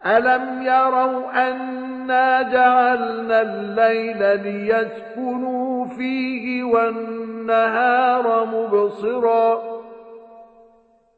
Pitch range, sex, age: 205-235 Hz, male, 50-69